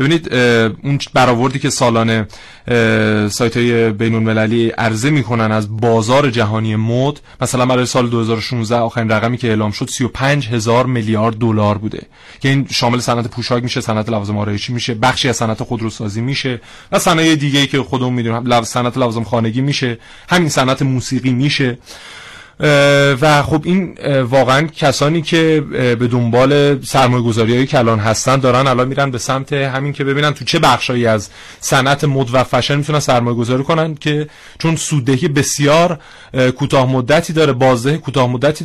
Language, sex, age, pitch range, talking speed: Persian, male, 30-49, 115-140 Hz, 150 wpm